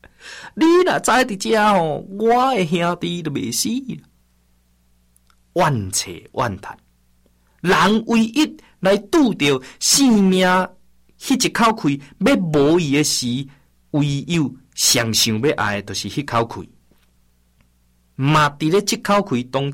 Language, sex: Chinese, male